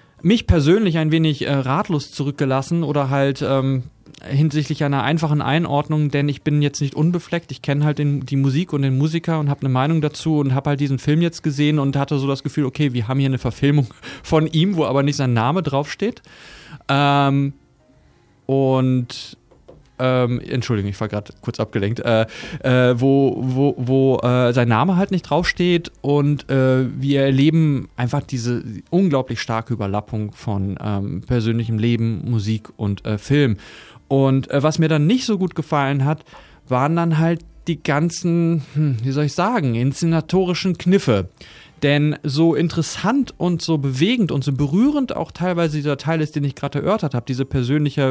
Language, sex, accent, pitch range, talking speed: German, male, German, 130-160 Hz, 170 wpm